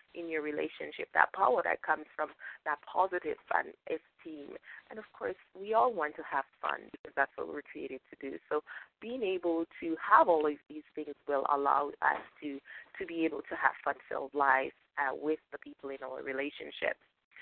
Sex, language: female, English